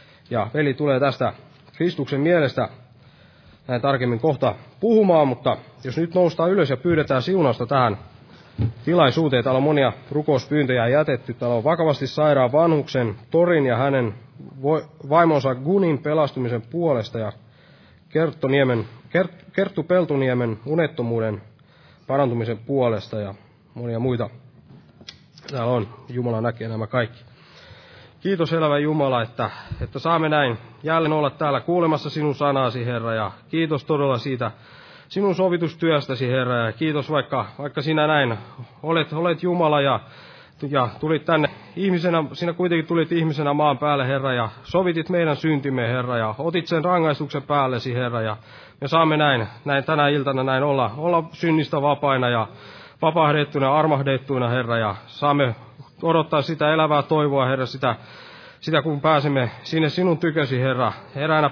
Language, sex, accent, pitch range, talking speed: Finnish, male, native, 125-155 Hz, 135 wpm